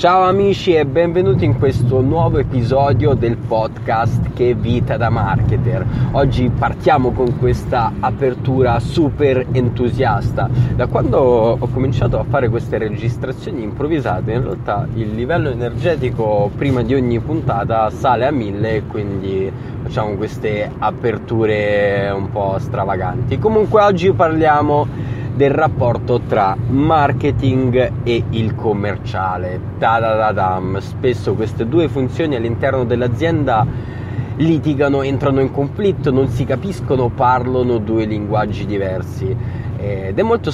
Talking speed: 125 wpm